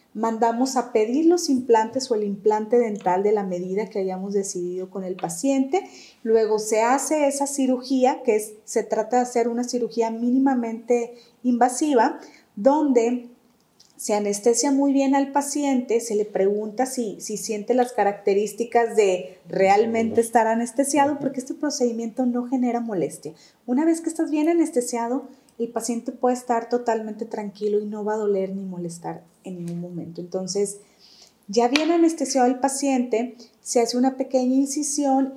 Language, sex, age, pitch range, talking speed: Spanish, female, 30-49, 215-260 Hz, 155 wpm